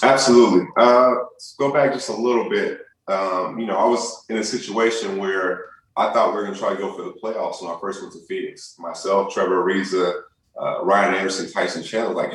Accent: American